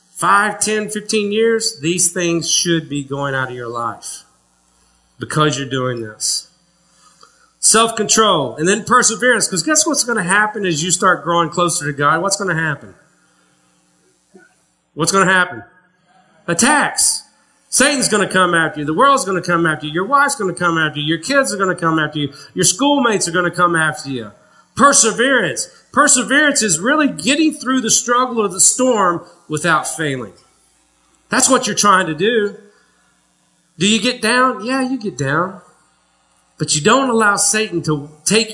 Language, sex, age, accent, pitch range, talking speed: English, male, 40-59, American, 150-215 Hz, 175 wpm